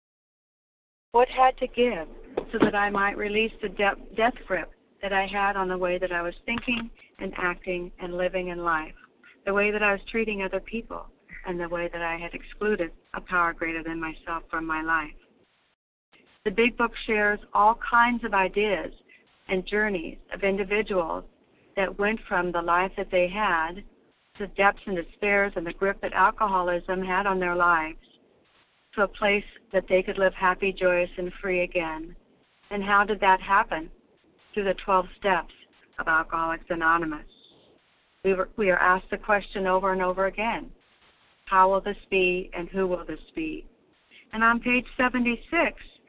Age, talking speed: 60-79, 170 wpm